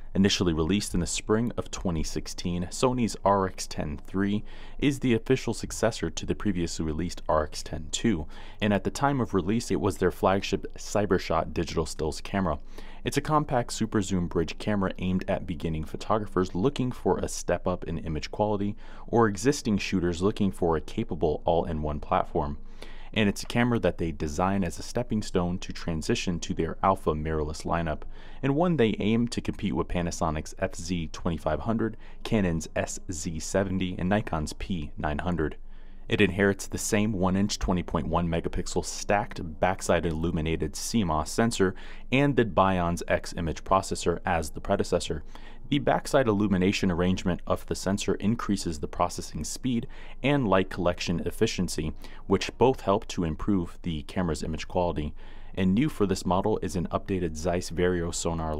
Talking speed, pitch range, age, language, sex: 155 wpm, 85-105 Hz, 30-49, English, male